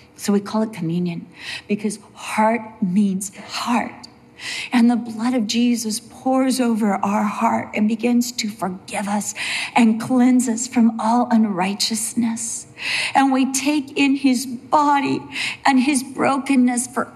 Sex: female